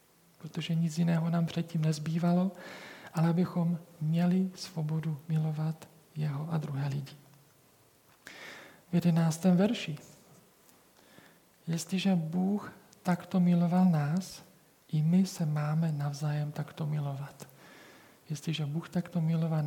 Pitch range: 155-185 Hz